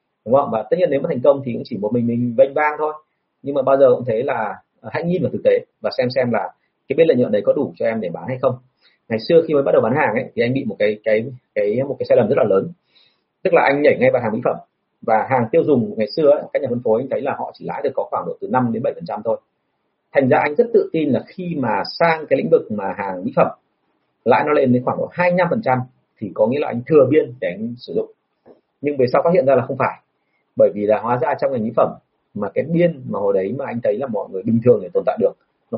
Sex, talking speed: male, 300 wpm